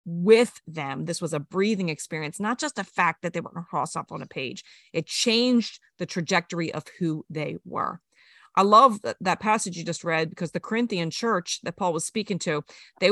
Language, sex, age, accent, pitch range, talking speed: English, female, 40-59, American, 185-270 Hz, 205 wpm